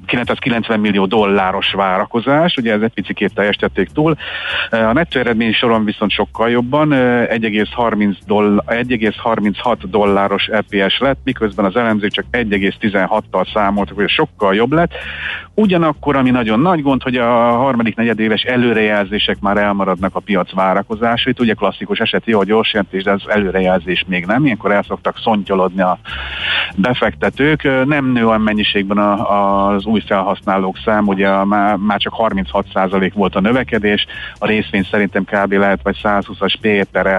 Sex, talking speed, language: male, 140 wpm, Hungarian